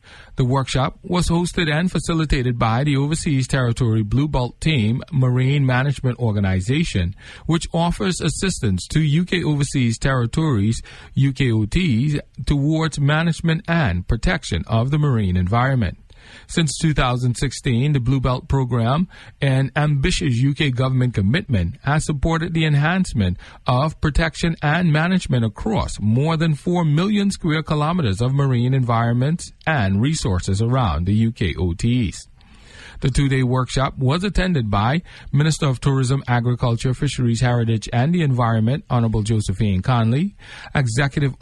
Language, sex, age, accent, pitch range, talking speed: English, male, 40-59, American, 120-150 Hz, 125 wpm